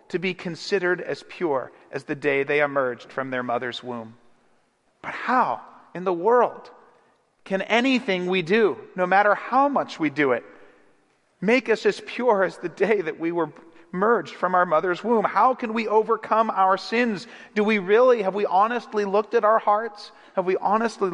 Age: 40-59